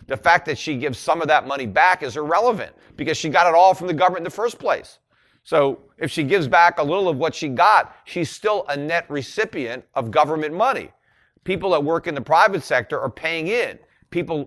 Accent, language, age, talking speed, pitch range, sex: American, English, 40-59, 225 wpm, 120-175 Hz, male